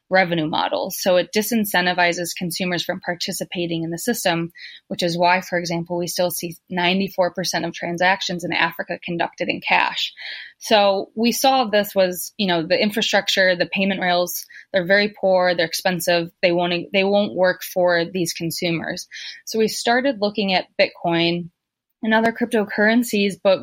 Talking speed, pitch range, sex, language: 155 wpm, 175-205 Hz, female, English